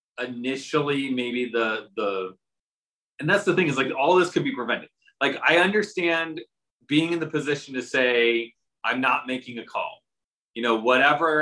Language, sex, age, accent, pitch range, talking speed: English, male, 30-49, American, 120-155 Hz, 175 wpm